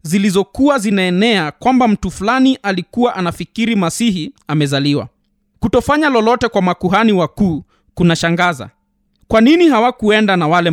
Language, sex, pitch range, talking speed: Swahili, male, 170-235 Hz, 110 wpm